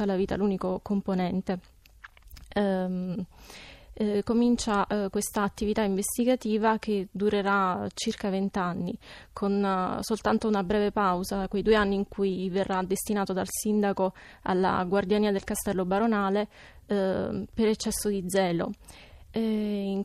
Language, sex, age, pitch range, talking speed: Italian, female, 20-39, 190-215 Hz, 110 wpm